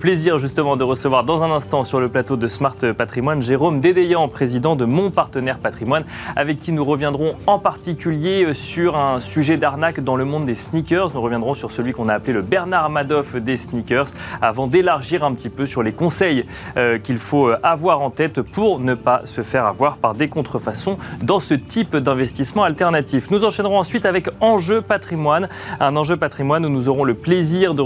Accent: French